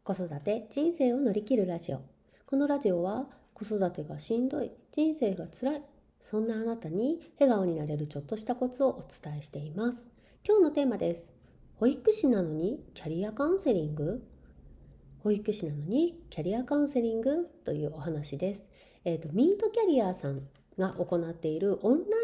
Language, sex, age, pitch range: Japanese, female, 40-59, 165-265 Hz